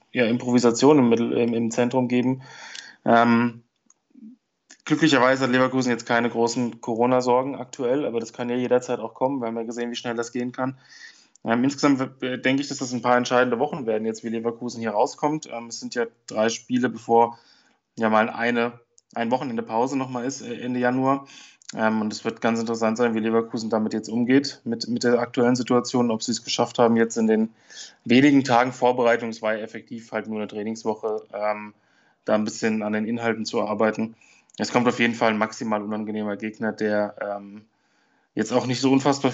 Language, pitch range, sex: German, 110-125 Hz, male